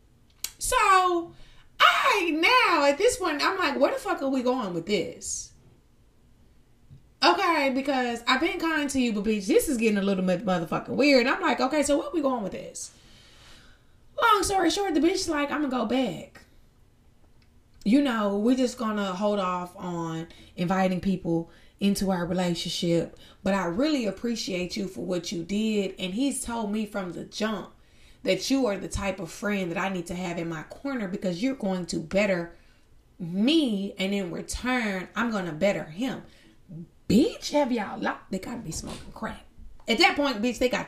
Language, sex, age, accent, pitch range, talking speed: English, female, 20-39, American, 185-290 Hz, 190 wpm